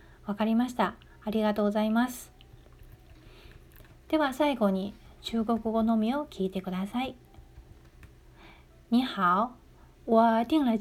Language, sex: Japanese, female